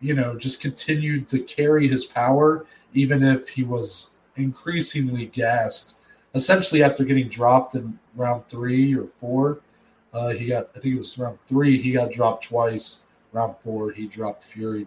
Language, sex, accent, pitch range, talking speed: English, male, American, 115-135 Hz, 165 wpm